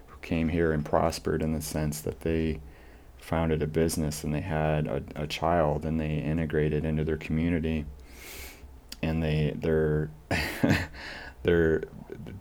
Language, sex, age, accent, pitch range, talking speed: English, male, 30-49, American, 75-85 Hz, 130 wpm